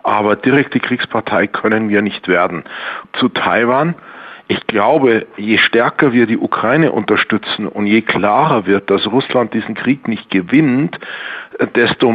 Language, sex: German, male